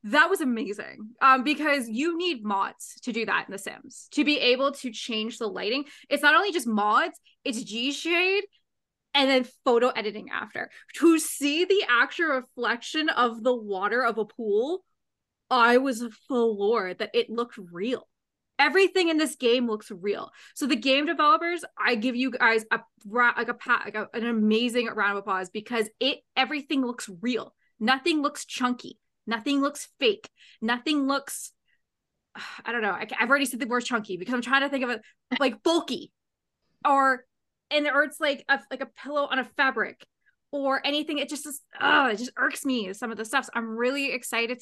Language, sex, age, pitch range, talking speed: English, female, 20-39, 225-285 Hz, 185 wpm